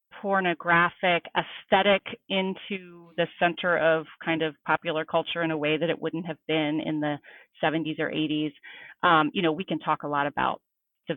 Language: English